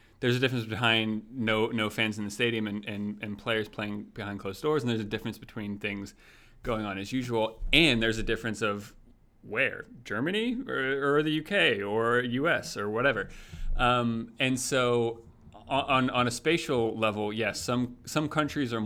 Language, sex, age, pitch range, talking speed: English, male, 30-49, 105-120 Hz, 180 wpm